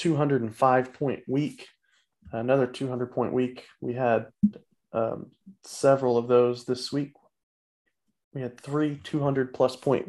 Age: 20-39